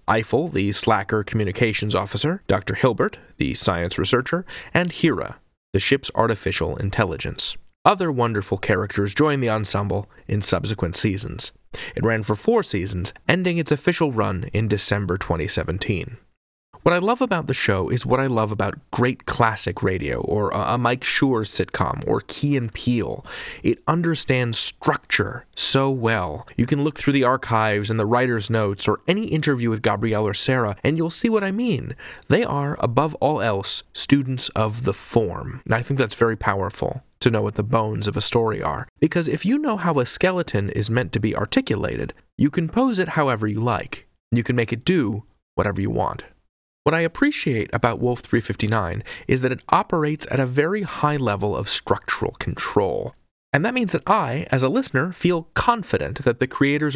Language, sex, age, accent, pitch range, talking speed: English, male, 20-39, American, 105-150 Hz, 180 wpm